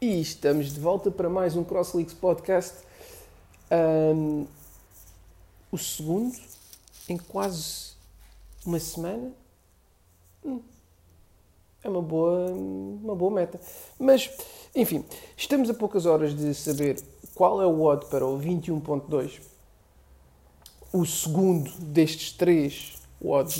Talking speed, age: 105 wpm, 50-69